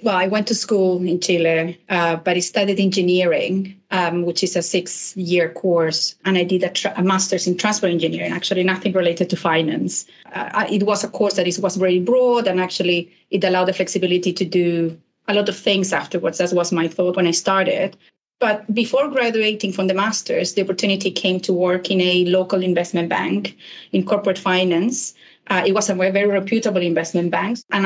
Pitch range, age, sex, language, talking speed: 175-195 Hz, 30-49, female, English, 200 wpm